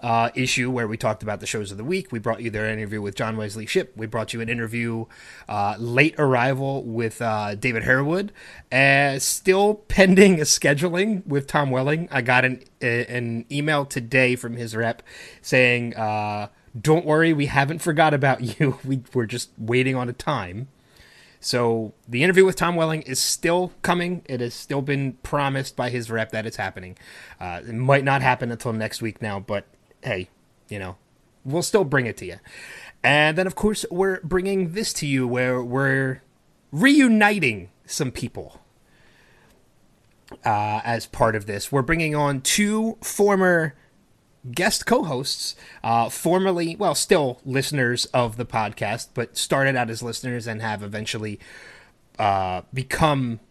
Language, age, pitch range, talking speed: English, 30-49, 115-150 Hz, 170 wpm